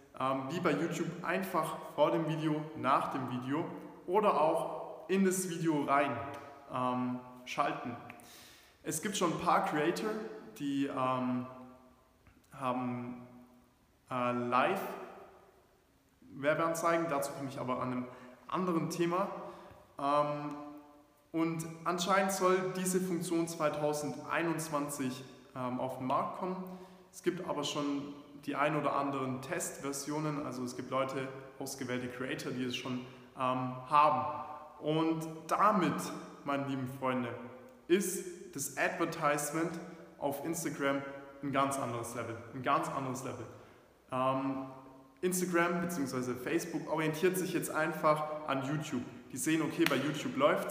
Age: 20-39